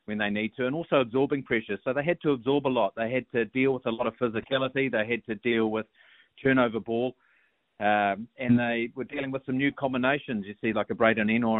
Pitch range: 110-130 Hz